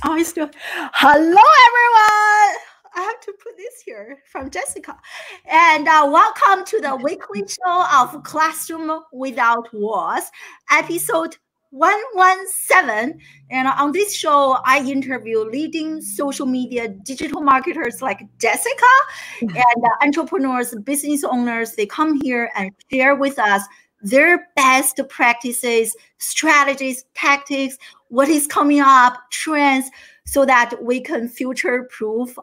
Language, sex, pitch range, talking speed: English, female, 245-330 Hz, 115 wpm